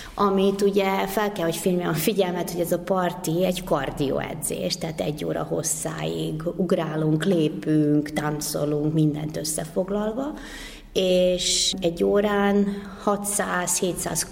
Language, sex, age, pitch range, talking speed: Hungarian, female, 30-49, 160-200 Hz, 110 wpm